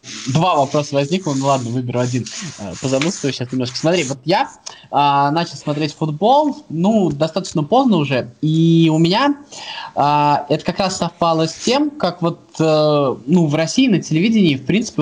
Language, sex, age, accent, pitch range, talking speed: Russian, male, 20-39, native, 140-175 Hz, 165 wpm